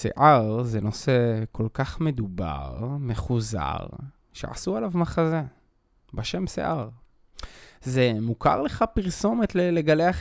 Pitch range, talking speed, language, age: 110-150 Hz, 105 wpm, Hebrew, 20-39